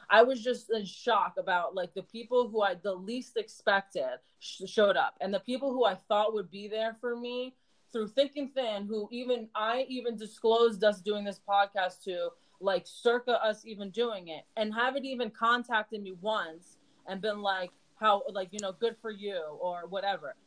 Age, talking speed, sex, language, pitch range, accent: 20-39, 190 wpm, female, English, 195-245 Hz, American